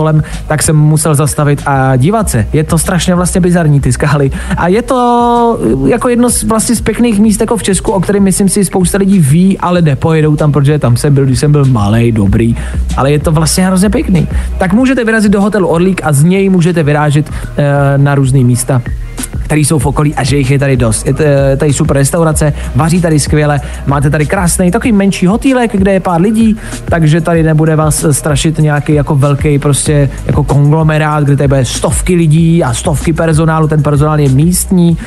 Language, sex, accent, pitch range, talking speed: Czech, male, native, 145-180 Hz, 200 wpm